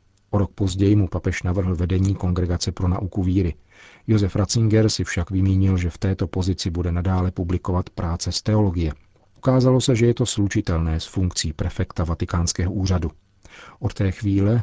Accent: native